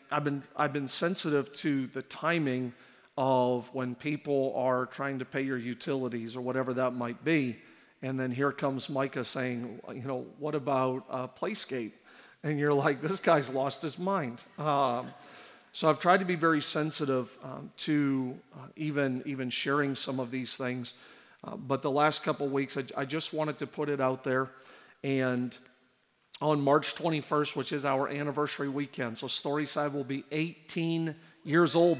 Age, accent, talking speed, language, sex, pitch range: 40-59, American, 175 wpm, English, male, 130-150 Hz